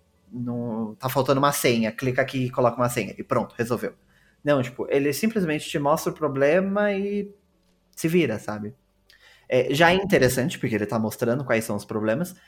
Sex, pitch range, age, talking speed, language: male, 115-145 Hz, 20-39, 175 wpm, Portuguese